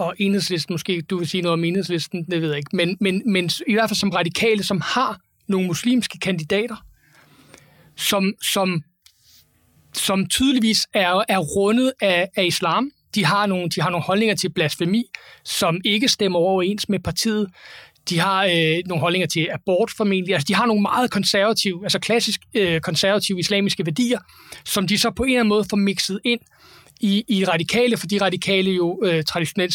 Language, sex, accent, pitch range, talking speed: Danish, male, native, 175-210 Hz, 180 wpm